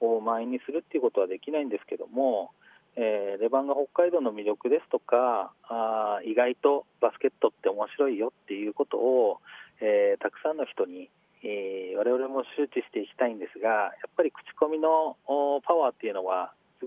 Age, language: 40-59, Japanese